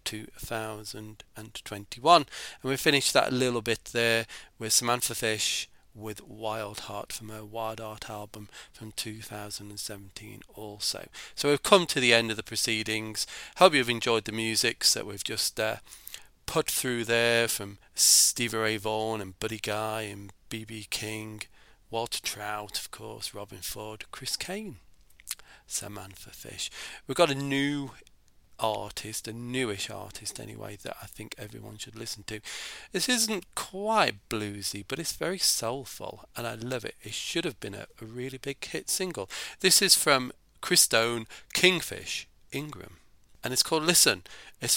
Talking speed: 150 wpm